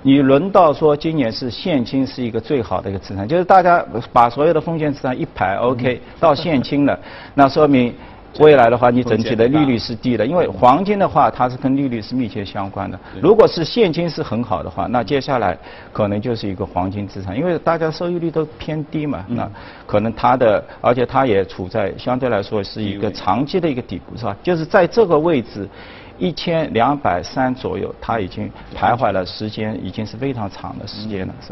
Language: Chinese